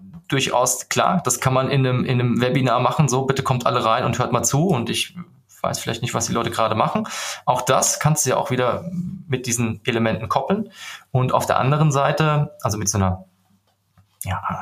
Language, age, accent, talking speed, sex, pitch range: German, 20-39, German, 205 wpm, male, 110-140 Hz